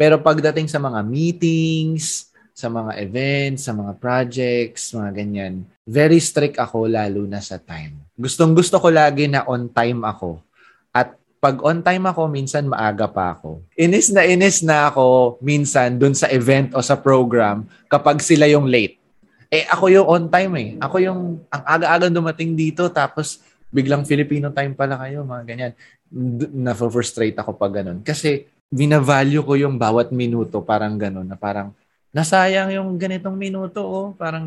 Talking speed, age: 160 wpm, 20-39